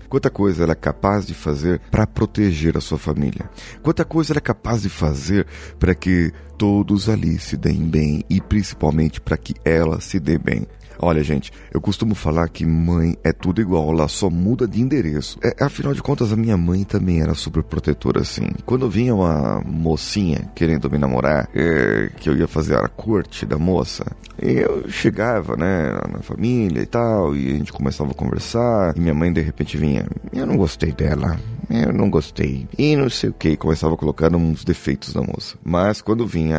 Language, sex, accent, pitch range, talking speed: Portuguese, male, Brazilian, 80-105 Hz, 190 wpm